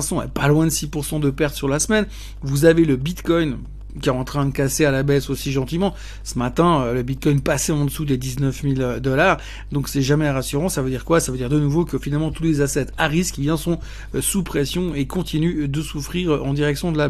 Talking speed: 230 wpm